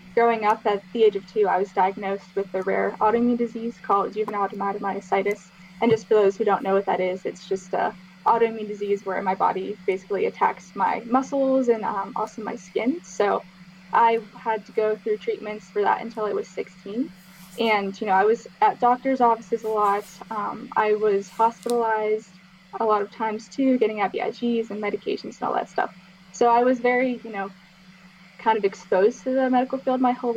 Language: English